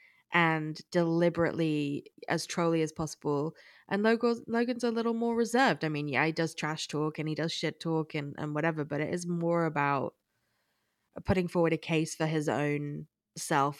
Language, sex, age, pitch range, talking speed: English, female, 20-39, 155-185 Hz, 175 wpm